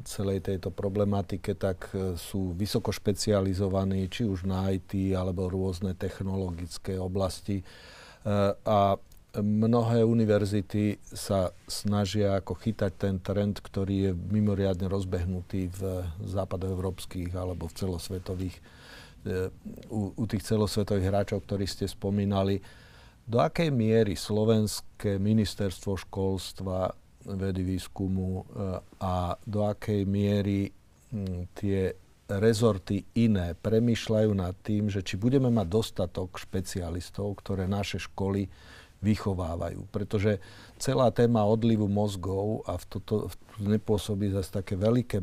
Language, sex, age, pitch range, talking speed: Slovak, male, 40-59, 95-105 Hz, 110 wpm